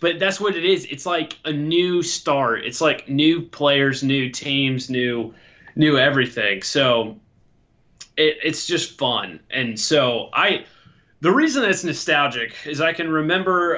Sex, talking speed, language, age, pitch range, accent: male, 155 wpm, English, 20-39, 125-155 Hz, American